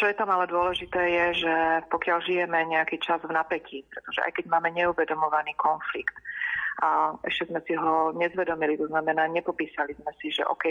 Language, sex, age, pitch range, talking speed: Slovak, female, 30-49, 155-170 Hz, 180 wpm